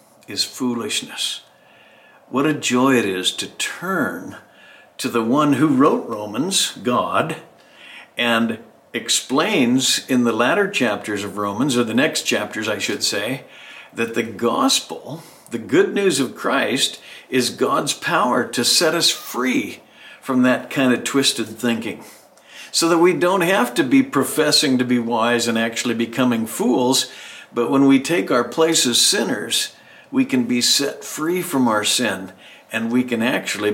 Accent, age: American, 60-79